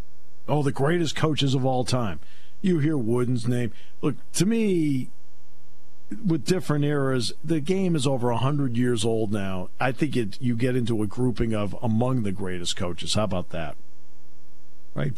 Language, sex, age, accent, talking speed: English, male, 50-69, American, 170 wpm